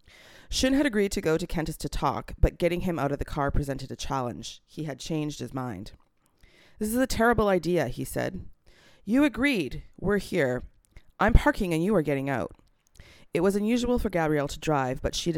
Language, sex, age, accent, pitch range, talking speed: English, female, 30-49, American, 130-185 Hz, 200 wpm